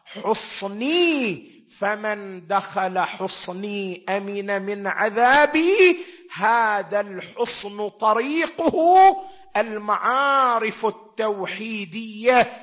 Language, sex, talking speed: Arabic, male, 55 wpm